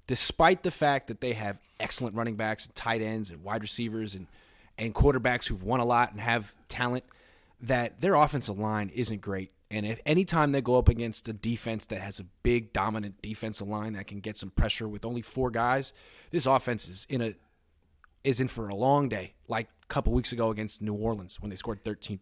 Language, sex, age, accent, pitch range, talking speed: English, male, 30-49, American, 105-140 Hz, 220 wpm